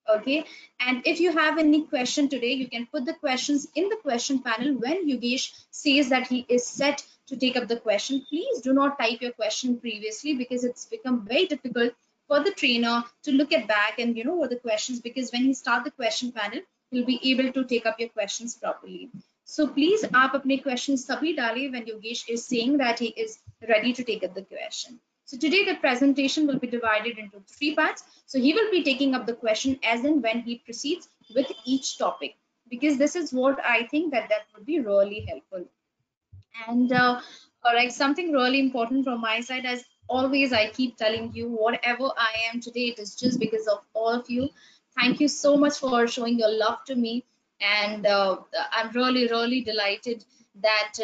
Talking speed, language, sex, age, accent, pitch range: 205 wpm, Tamil, female, 20-39, native, 230-280 Hz